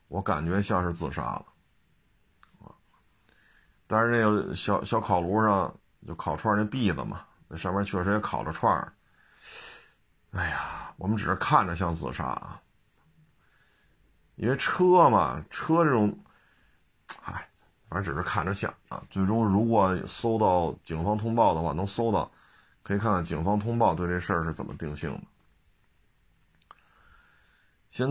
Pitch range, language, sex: 90-110 Hz, Chinese, male